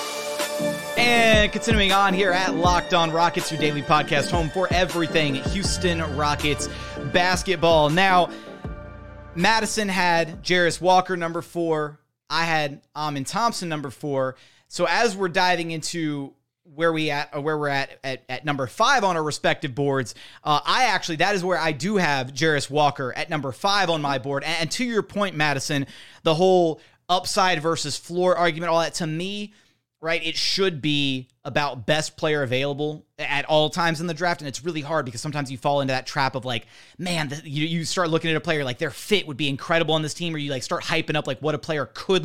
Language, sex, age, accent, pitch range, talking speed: English, male, 30-49, American, 145-175 Hz, 195 wpm